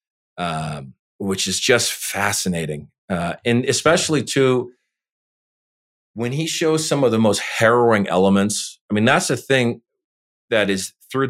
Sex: male